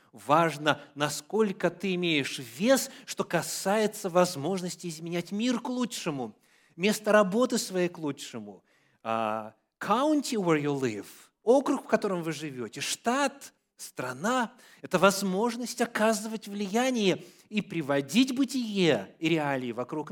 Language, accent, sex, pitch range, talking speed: Russian, native, male, 140-210 Hz, 115 wpm